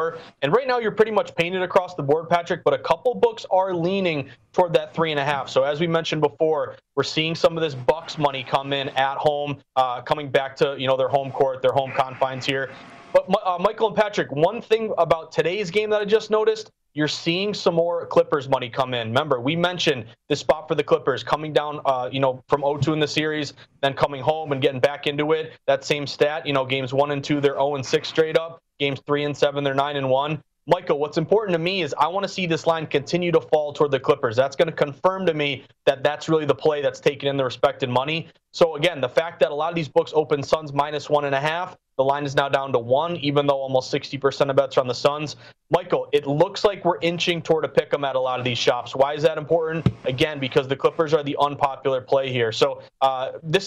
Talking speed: 250 wpm